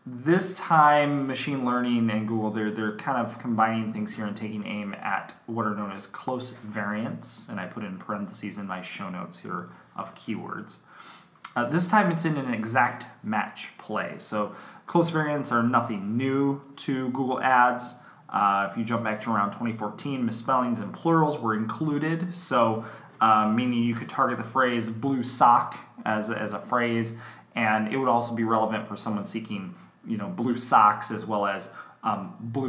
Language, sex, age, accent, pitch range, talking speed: English, male, 20-39, American, 105-130 Hz, 180 wpm